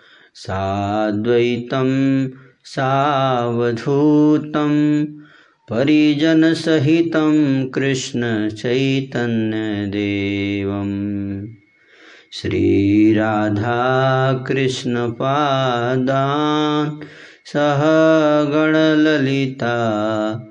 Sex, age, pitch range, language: male, 30-49, 110-150 Hz, Hindi